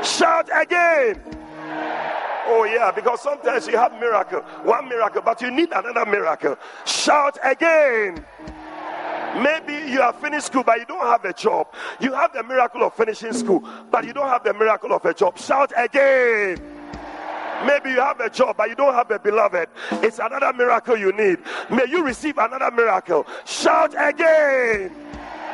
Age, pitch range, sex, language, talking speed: 40-59, 245-345 Hz, male, English, 165 wpm